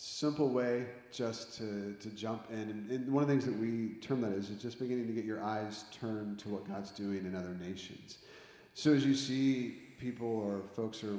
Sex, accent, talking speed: male, American, 215 wpm